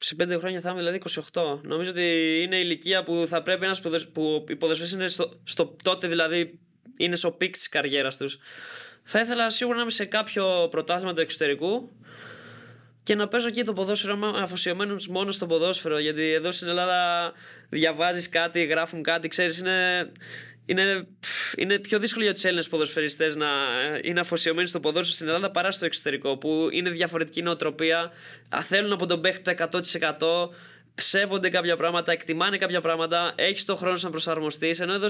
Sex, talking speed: male, 170 wpm